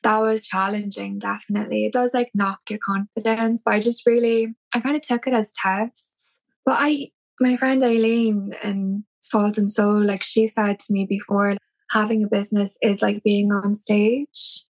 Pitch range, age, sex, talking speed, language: 205-240 Hz, 10-29, female, 180 wpm, English